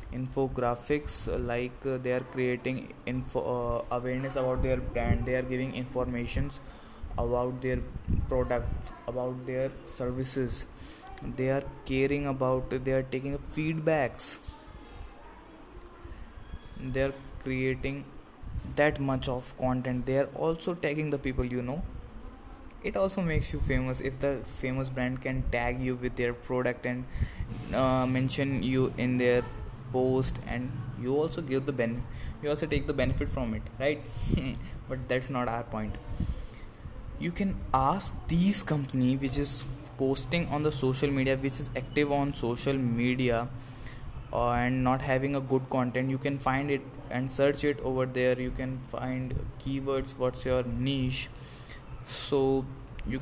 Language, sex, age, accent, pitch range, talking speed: English, male, 20-39, Indian, 125-135 Hz, 145 wpm